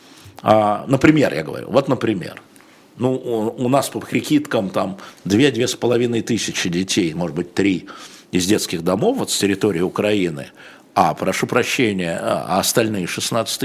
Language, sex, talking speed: Russian, male, 130 wpm